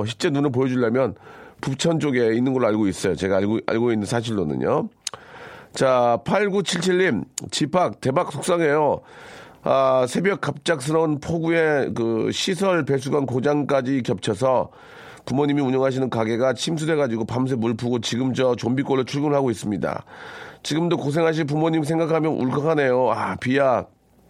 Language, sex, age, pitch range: Korean, male, 40-59, 125-165 Hz